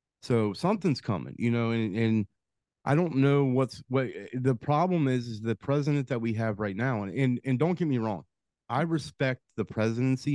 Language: English